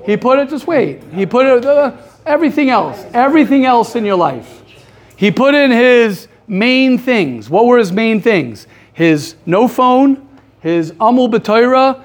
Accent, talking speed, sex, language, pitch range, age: American, 165 wpm, male, English, 165-235 Hz, 50-69